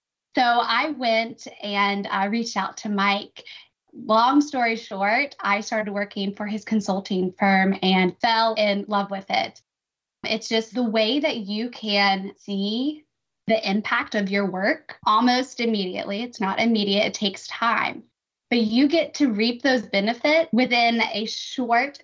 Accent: American